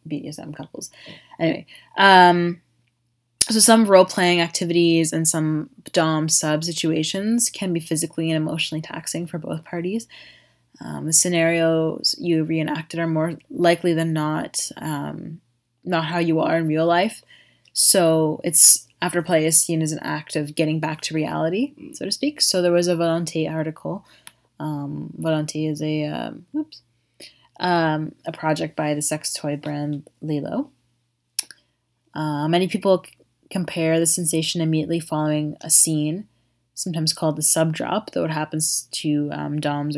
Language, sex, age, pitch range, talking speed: English, female, 20-39, 155-175 Hz, 150 wpm